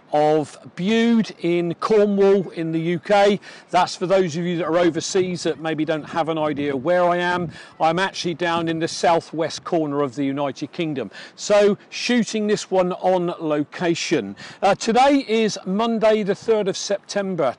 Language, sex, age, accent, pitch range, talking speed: English, male, 40-59, British, 165-210 Hz, 165 wpm